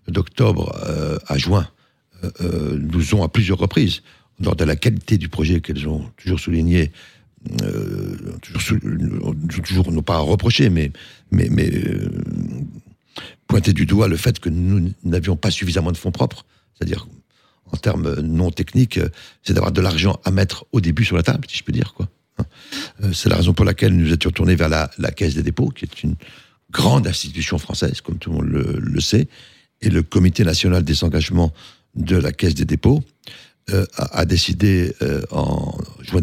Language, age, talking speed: French, 60-79, 185 wpm